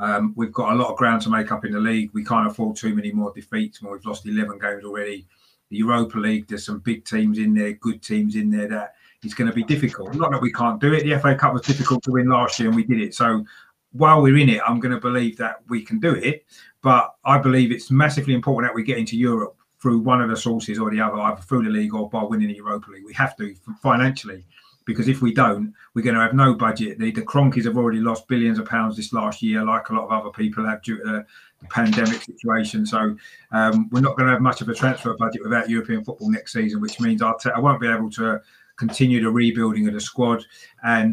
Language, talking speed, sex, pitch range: English, 255 wpm, male, 110-135 Hz